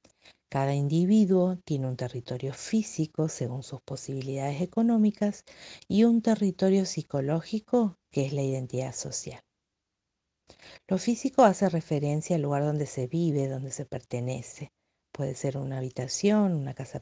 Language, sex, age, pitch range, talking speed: French, female, 50-69, 135-200 Hz, 130 wpm